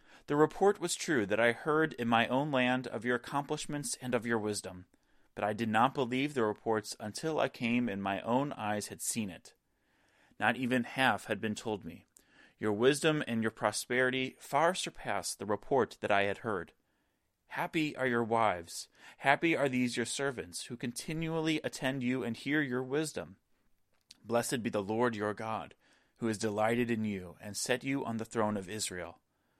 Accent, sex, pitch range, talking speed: American, male, 105-135 Hz, 185 wpm